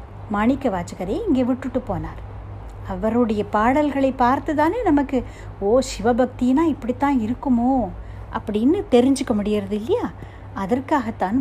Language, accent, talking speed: Tamil, native, 100 wpm